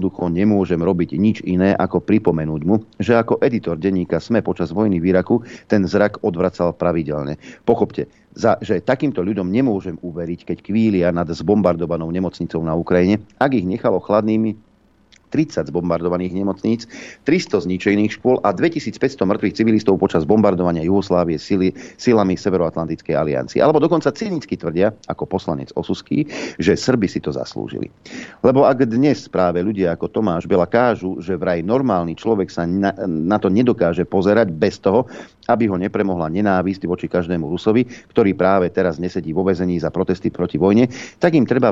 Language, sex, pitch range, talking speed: Slovak, male, 85-105 Hz, 155 wpm